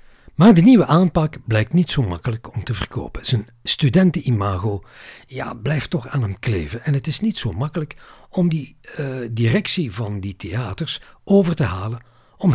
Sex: male